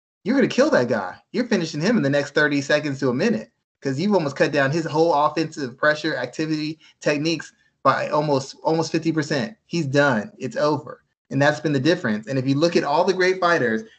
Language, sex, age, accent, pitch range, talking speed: English, male, 20-39, American, 135-170 Hz, 215 wpm